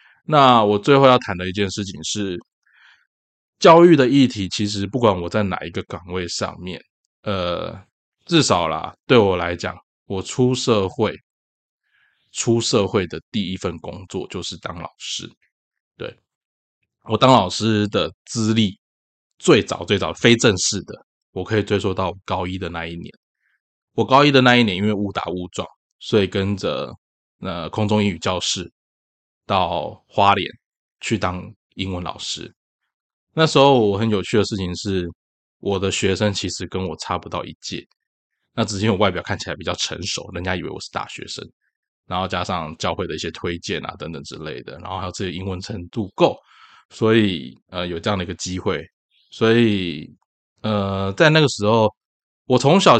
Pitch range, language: 90-110 Hz, Chinese